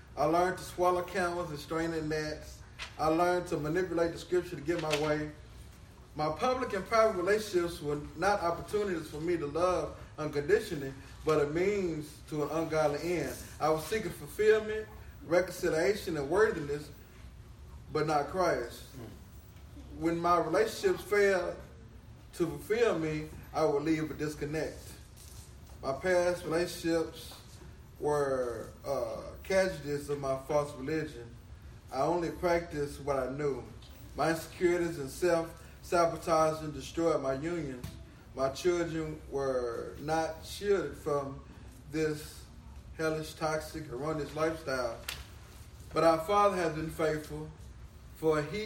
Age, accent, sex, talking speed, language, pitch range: 20-39, American, male, 130 wpm, English, 145-175 Hz